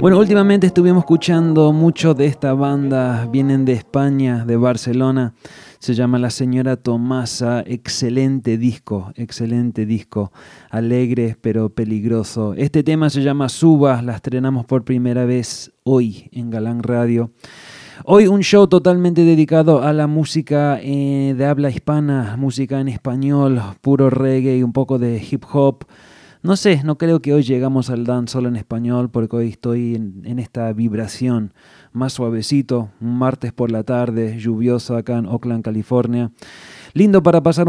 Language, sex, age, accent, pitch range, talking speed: English, male, 20-39, Argentinian, 120-145 Hz, 150 wpm